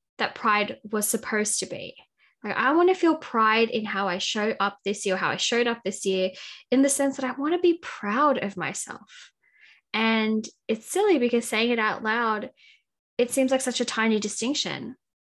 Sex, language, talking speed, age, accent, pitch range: female, English, 200 wpm, 10-29, Australian, 205-255 Hz